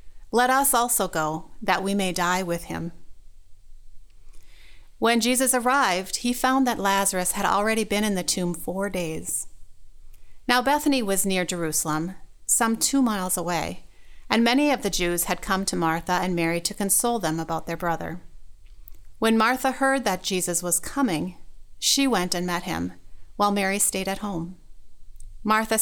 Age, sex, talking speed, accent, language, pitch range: 30-49, female, 160 wpm, American, English, 160-215 Hz